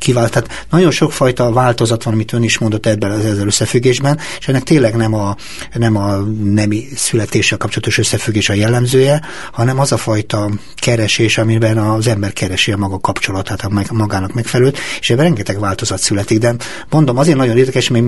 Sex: male